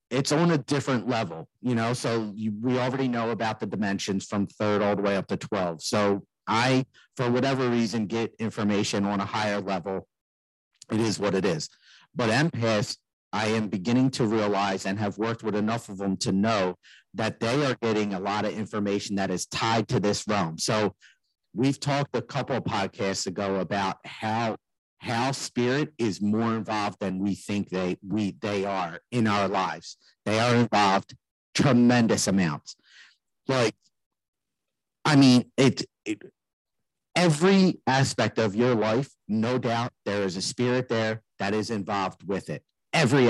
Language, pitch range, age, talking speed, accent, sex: English, 100-125 Hz, 50-69, 170 wpm, American, male